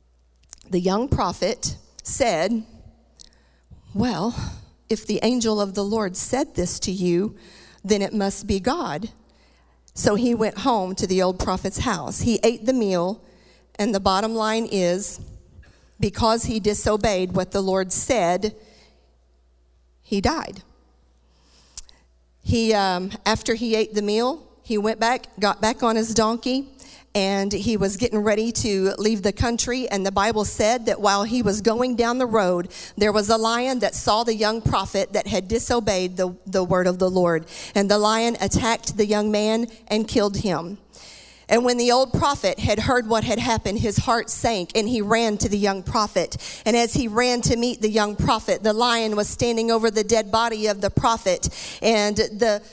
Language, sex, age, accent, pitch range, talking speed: English, female, 50-69, American, 190-230 Hz, 175 wpm